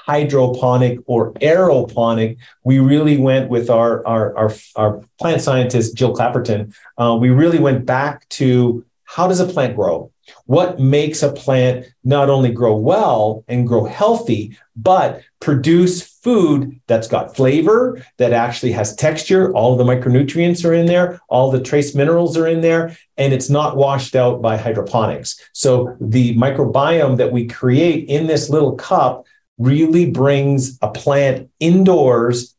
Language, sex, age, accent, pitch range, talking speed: English, male, 40-59, American, 115-145 Hz, 145 wpm